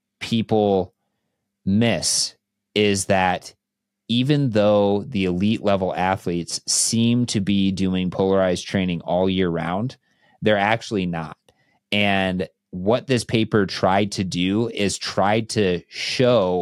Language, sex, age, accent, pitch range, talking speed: English, male, 30-49, American, 95-115 Hz, 120 wpm